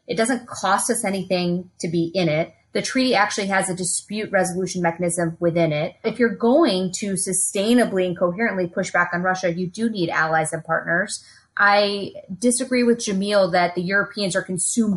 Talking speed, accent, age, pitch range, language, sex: 180 wpm, American, 20-39, 175-230 Hz, English, female